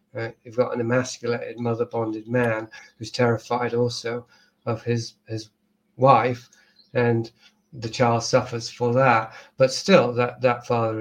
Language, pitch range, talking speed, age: English, 115-125 Hz, 130 wpm, 40-59